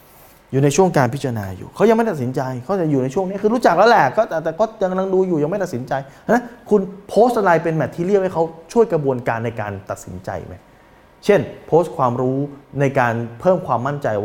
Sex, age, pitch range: male, 20-39, 115-160 Hz